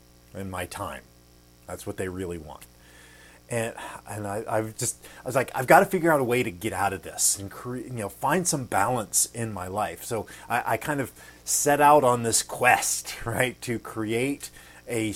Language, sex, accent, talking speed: English, male, American, 200 wpm